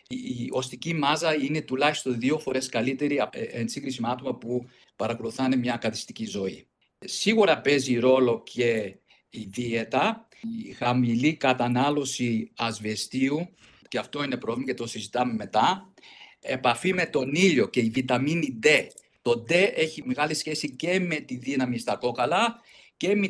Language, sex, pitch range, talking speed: Greek, male, 120-175 Hz, 140 wpm